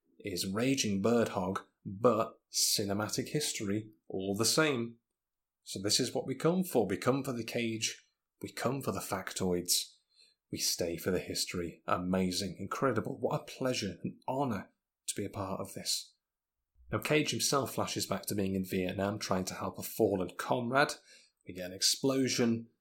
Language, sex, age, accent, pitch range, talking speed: English, male, 30-49, British, 95-115 Hz, 165 wpm